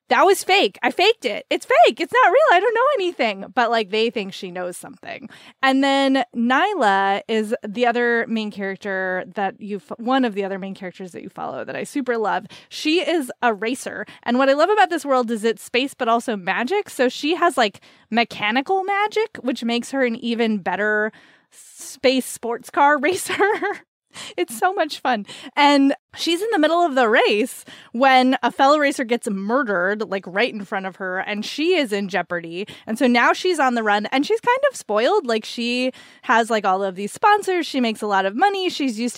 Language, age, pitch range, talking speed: English, 20-39, 210-285 Hz, 205 wpm